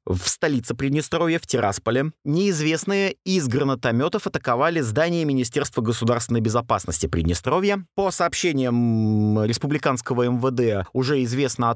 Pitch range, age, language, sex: 115-160 Hz, 30-49, Russian, male